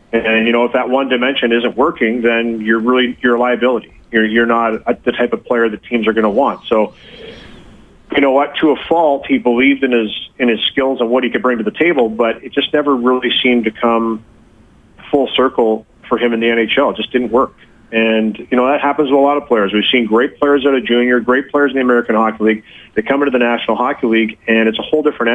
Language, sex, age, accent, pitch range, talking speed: English, male, 40-59, American, 110-125 Hz, 250 wpm